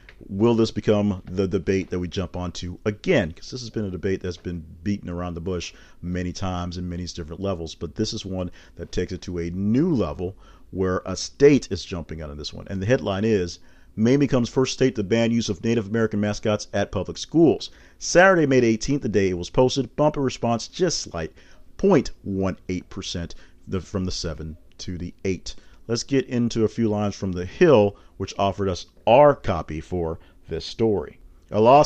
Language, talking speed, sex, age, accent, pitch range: English, 200 wpm, male, 40-59, American, 90-115 Hz